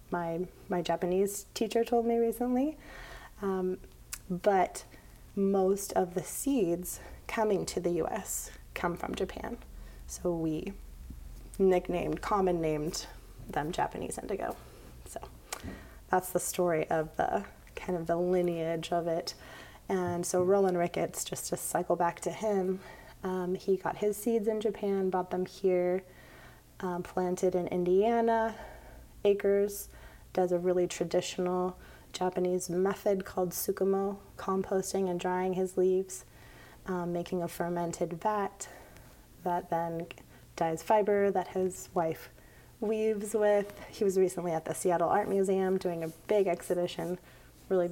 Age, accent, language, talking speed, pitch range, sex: 20-39, American, English, 130 wpm, 170-195 Hz, female